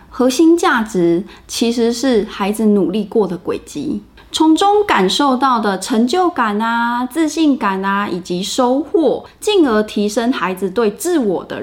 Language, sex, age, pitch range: Chinese, female, 20-39, 200-290 Hz